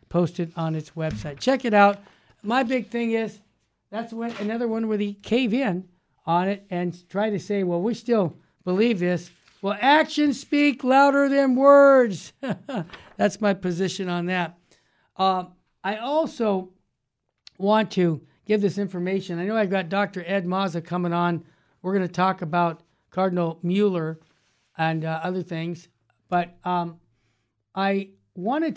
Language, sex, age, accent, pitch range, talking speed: English, male, 60-79, American, 170-210 Hz, 155 wpm